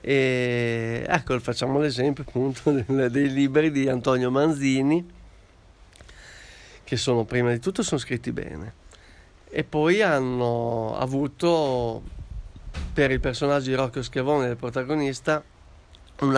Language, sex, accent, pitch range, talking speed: Italian, male, native, 120-150 Hz, 115 wpm